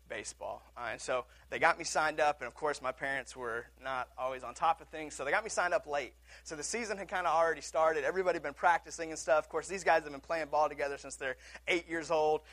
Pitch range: 150-200 Hz